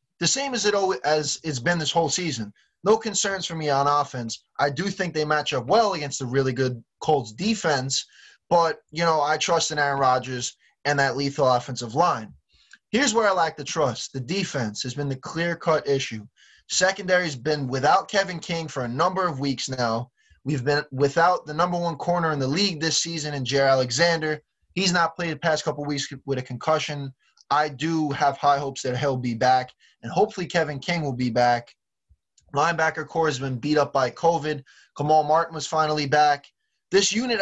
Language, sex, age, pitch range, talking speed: English, male, 20-39, 135-170 Hz, 200 wpm